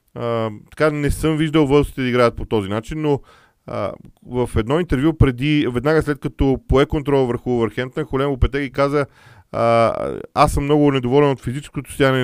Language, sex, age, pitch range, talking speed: Bulgarian, male, 40-59, 115-140 Hz, 170 wpm